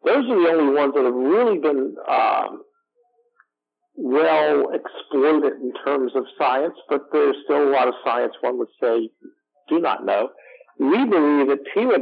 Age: 50-69